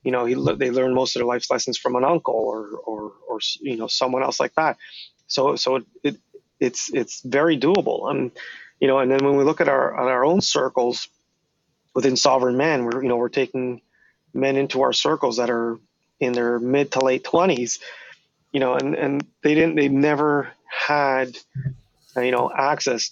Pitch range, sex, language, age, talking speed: 120-140 Hz, male, English, 30-49, 195 wpm